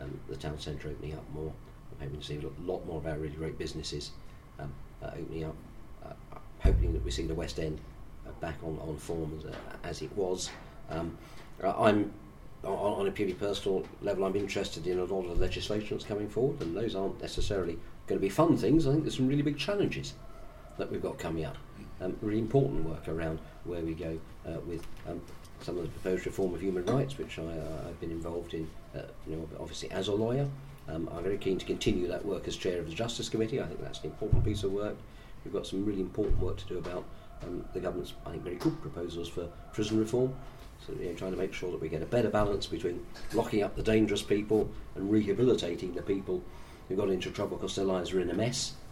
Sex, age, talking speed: male, 40-59, 230 wpm